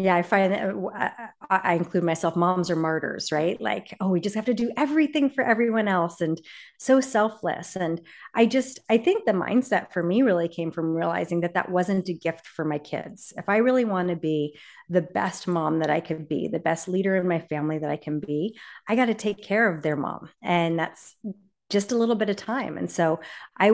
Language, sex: English, female